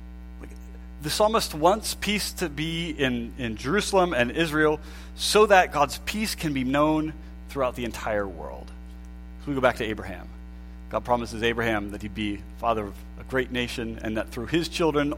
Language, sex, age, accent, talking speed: English, male, 30-49, American, 170 wpm